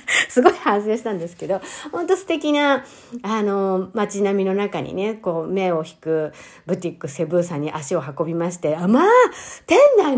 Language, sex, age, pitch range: Japanese, female, 50-69, 175-260 Hz